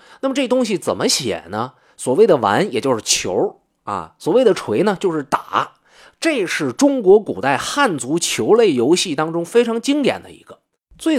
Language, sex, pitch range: Chinese, male, 170-270 Hz